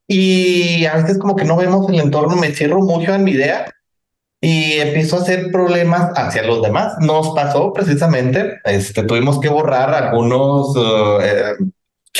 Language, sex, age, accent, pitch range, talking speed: Spanish, male, 30-49, Mexican, 130-180 Hz, 155 wpm